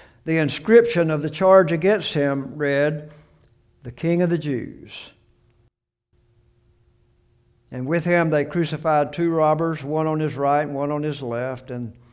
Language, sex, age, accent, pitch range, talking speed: English, male, 60-79, American, 130-175 Hz, 150 wpm